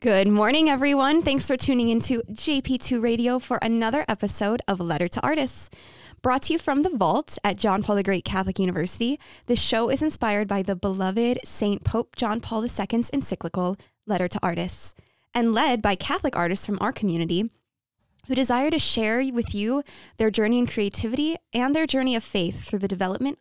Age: 10-29